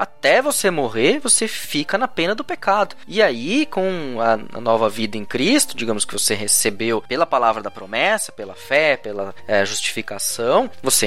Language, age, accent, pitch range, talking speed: Portuguese, 20-39, Brazilian, 115-185 Hz, 170 wpm